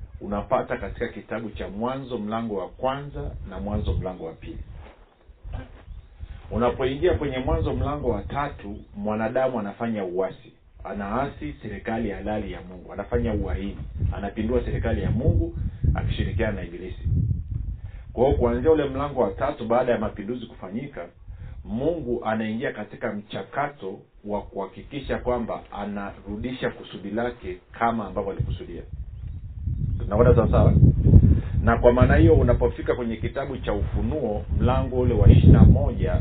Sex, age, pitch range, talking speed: male, 50-69, 95-120 Hz, 125 wpm